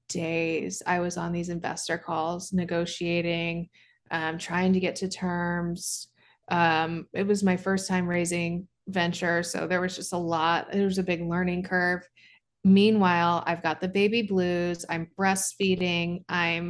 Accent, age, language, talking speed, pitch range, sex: American, 20-39, English, 155 wpm, 170-195 Hz, female